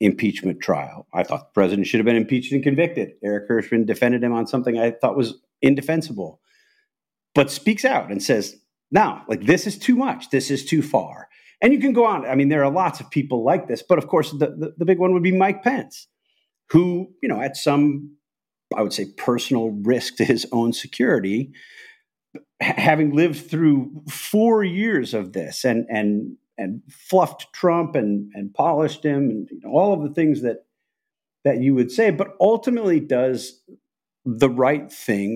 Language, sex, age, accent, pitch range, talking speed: English, male, 50-69, American, 115-175 Hz, 185 wpm